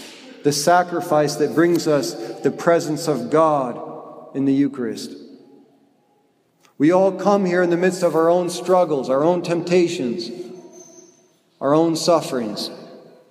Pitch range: 140-165 Hz